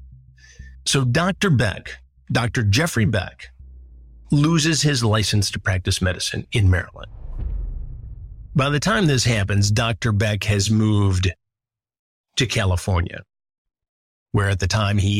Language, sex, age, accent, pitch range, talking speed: English, male, 50-69, American, 95-120 Hz, 120 wpm